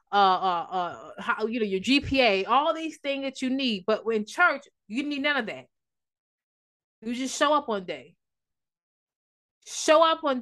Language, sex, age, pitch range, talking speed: English, female, 20-39, 205-275 Hz, 180 wpm